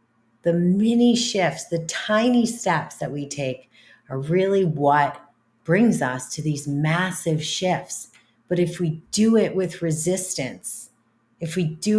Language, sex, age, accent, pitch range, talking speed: English, female, 40-59, American, 135-185 Hz, 140 wpm